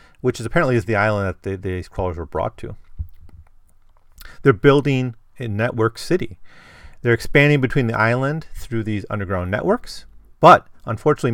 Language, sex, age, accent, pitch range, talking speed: English, male, 40-59, American, 90-135 Hz, 155 wpm